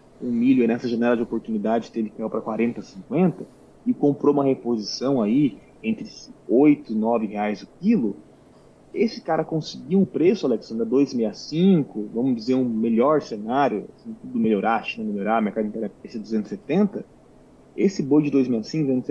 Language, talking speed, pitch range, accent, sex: Portuguese, 145 wpm, 125-210 Hz, Brazilian, male